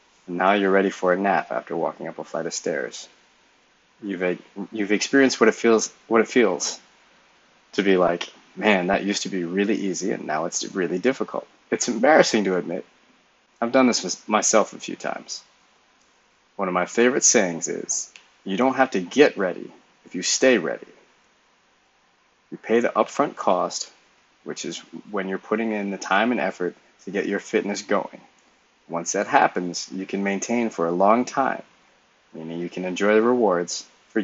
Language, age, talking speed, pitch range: English, 20-39, 180 wpm, 90-115 Hz